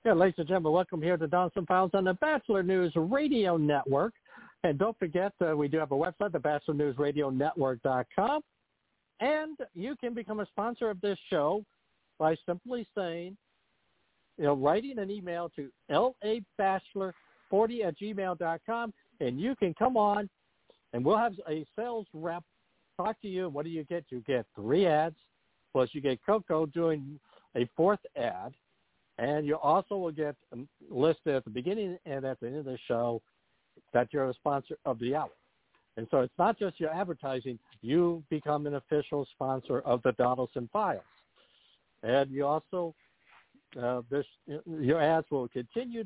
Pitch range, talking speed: 145-195 Hz, 160 wpm